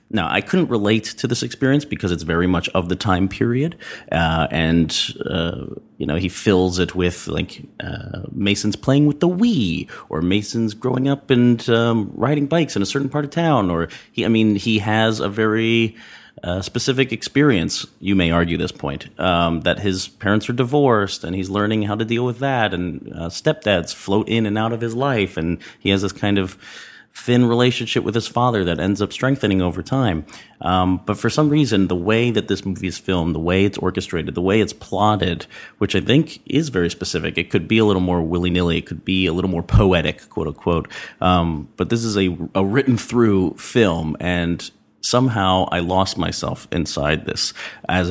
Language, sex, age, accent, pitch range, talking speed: English, male, 30-49, American, 90-115 Hz, 195 wpm